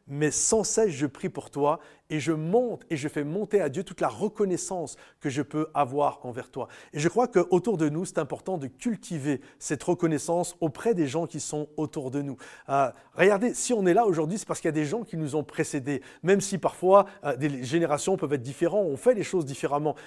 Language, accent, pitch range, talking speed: French, French, 145-190 Hz, 230 wpm